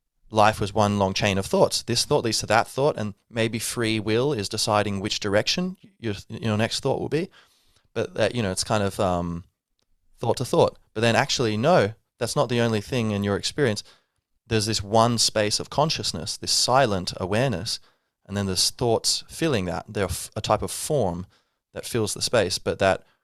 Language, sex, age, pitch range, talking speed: English, male, 20-39, 95-115 Hz, 195 wpm